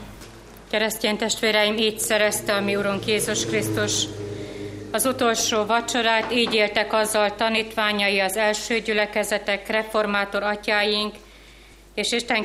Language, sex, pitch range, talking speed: Hungarian, female, 200-230 Hz, 110 wpm